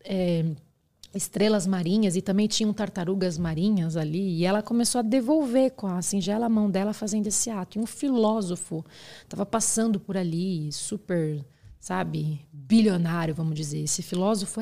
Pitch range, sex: 170-235 Hz, female